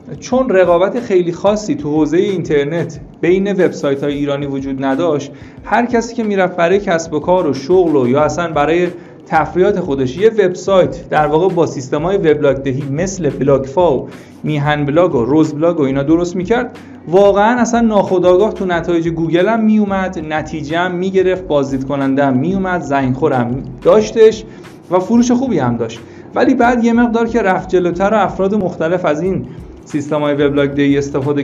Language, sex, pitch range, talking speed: Persian, male, 145-190 Hz, 165 wpm